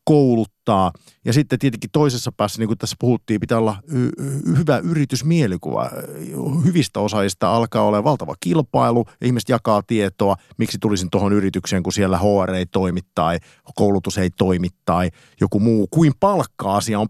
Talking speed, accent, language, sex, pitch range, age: 155 wpm, native, Finnish, male, 100-140 Hz, 50-69